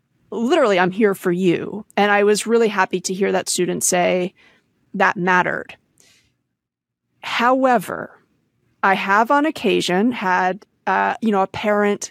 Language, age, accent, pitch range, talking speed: English, 30-49, American, 185-225 Hz, 140 wpm